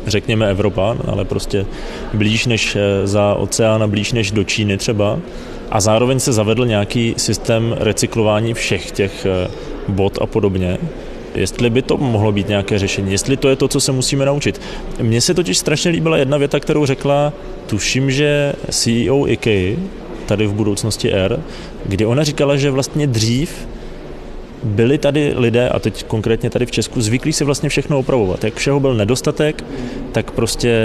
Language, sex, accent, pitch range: Czech, male, native, 100-135 Hz